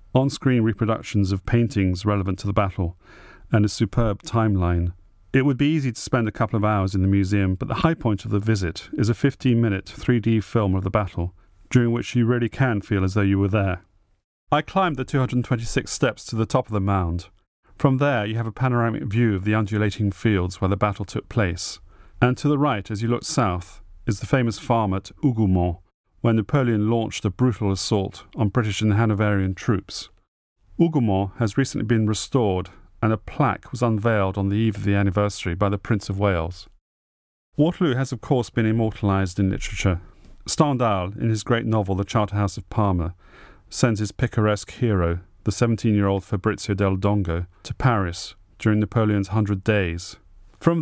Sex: male